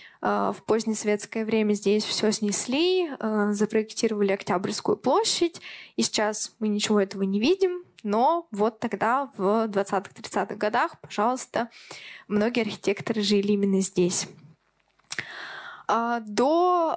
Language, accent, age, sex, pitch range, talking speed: Russian, native, 20-39, female, 215-260 Hz, 105 wpm